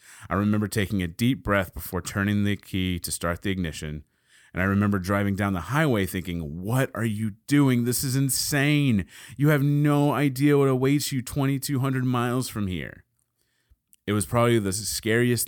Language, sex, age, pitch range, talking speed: English, male, 30-49, 90-120 Hz, 175 wpm